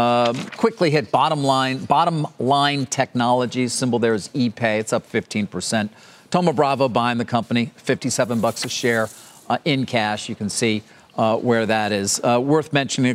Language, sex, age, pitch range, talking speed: English, male, 40-59, 110-135 Hz, 170 wpm